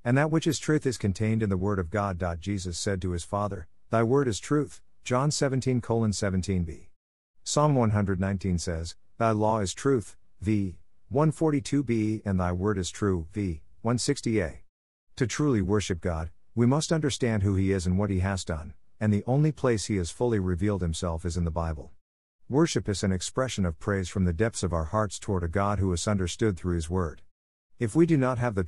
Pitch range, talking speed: 90-120 Hz, 195 wpm